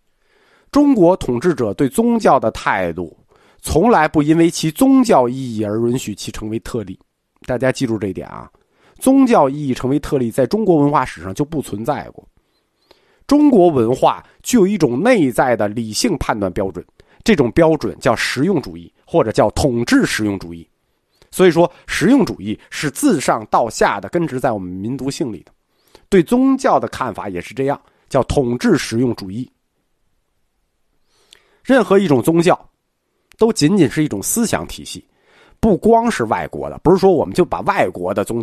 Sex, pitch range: male, 115-185 Hz